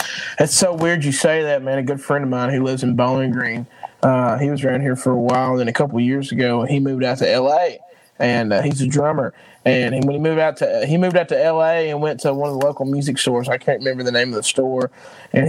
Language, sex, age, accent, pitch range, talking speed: English, male, 20-39, American, 130-180 Hz, 275 wpm